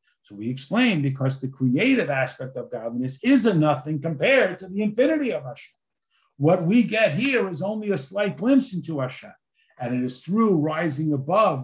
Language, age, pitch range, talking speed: English, 50-69, 140-185 Hz, 180 wpm